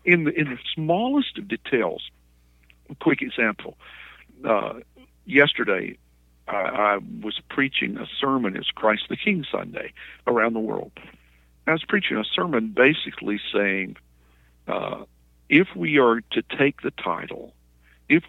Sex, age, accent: male, 50-69, American